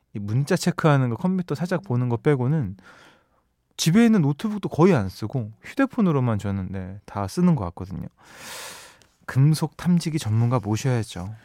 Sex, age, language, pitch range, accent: male, 20-39, Korean, 115-165 Hz, native